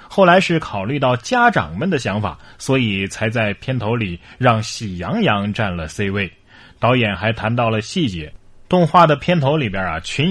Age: 20-39